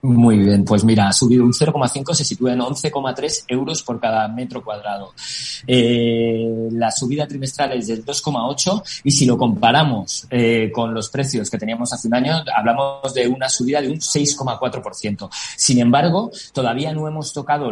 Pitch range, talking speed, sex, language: 115-140 Hz, 170 wpm, male, Spanish